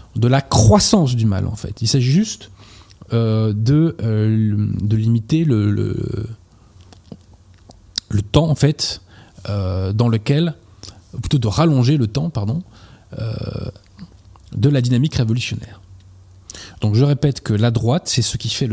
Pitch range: 100-135 Hz